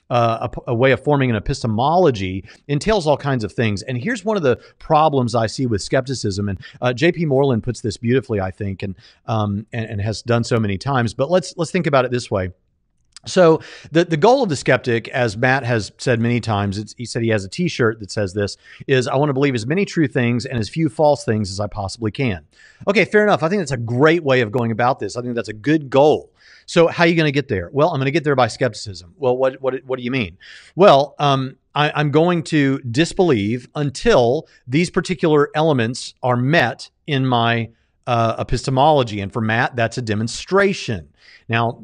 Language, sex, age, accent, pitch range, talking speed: English, male, 40-59, American, 115-155 Hz, 225 wpm